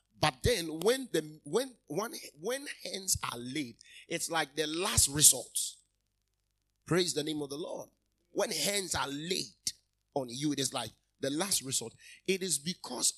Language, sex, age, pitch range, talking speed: English, male, 30-49, 110-165 Hz, 165 wpm